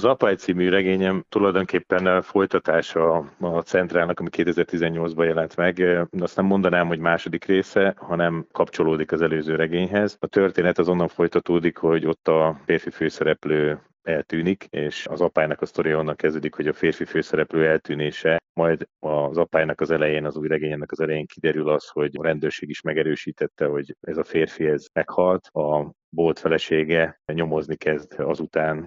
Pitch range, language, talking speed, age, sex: 80-90 Hz, Hungarian, 155 wpm, 30-49, male